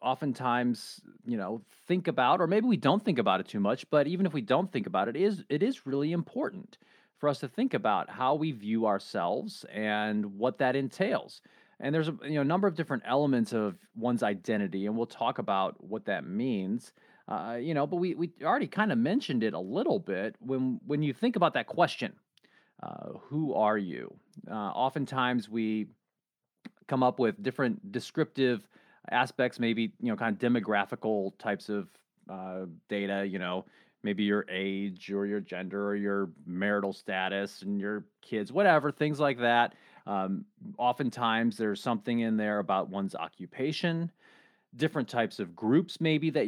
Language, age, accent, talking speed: English, 30-49, American, 180 wpm